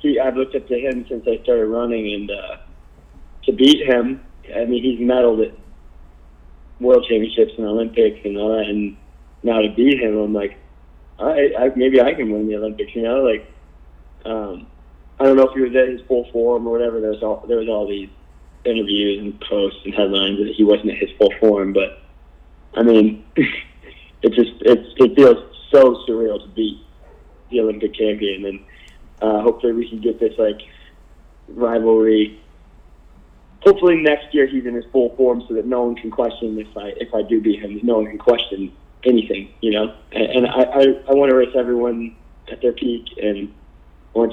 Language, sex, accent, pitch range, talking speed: English, male, American, 100-120 Hz, 195 wpm